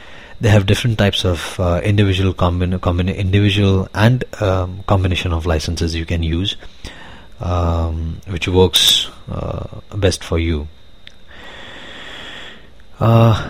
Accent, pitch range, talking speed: Indian, 85-105 Hz, 115 wpm